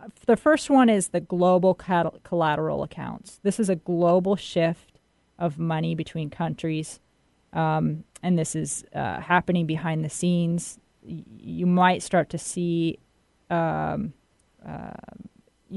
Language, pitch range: English, 160-185 Hz